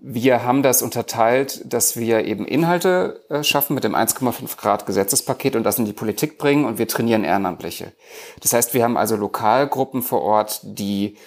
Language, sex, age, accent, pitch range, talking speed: German, male, 40-59, German, 115-145 Hz, 165 wpm